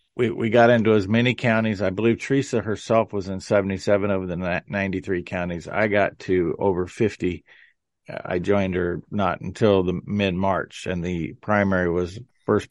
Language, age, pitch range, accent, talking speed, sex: English, 50-69, 100-120 Hz, American, 165 wpm, male